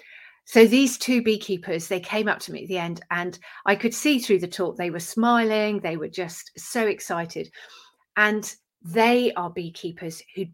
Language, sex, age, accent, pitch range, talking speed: English, female, 40-59, British, 175-210 Hz, 180 wpm